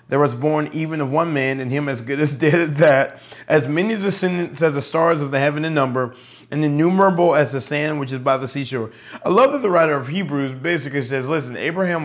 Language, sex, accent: English, male, American